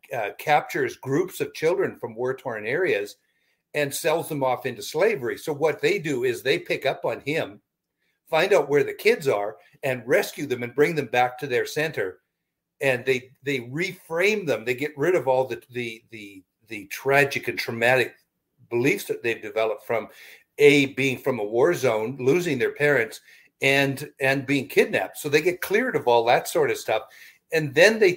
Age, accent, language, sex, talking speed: 60-79, American, English, male, 190 wpm